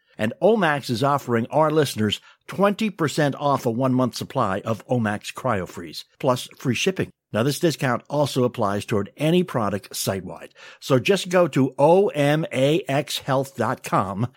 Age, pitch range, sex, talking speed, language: 60-79, 115-155 Hz, male, 130 wpm, English